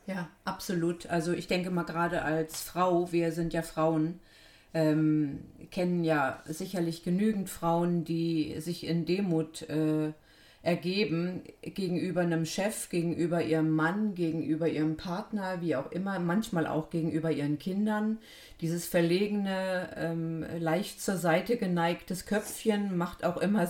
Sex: female